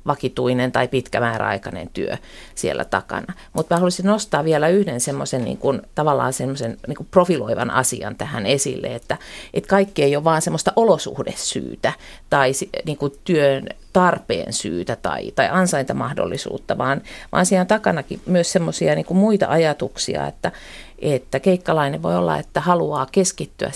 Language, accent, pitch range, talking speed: Finnish, native, 135-180 Hz, 140 wpm